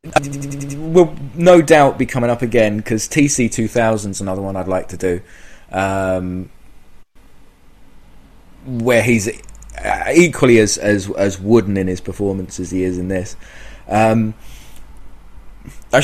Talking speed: 130 wpm